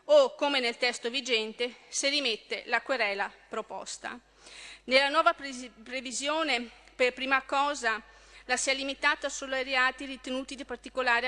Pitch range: 235-275 Hz